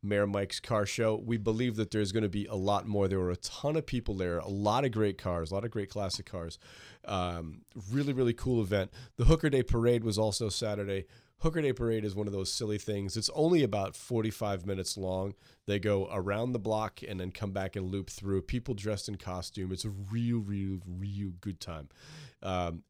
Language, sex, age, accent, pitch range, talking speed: English, male, 30-49, American, 95-120 Hz, 220 wpm